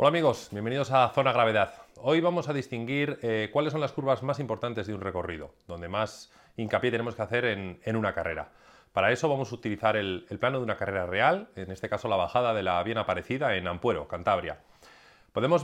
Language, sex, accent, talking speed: Spanish, male, Spanish, 210 wpm